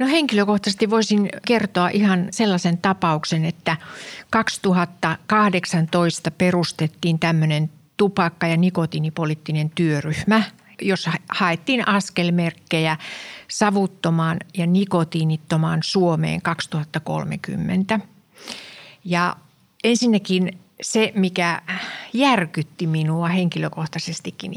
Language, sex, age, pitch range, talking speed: Finnish, female, 60-79, 165-195 Hz, 75 wpm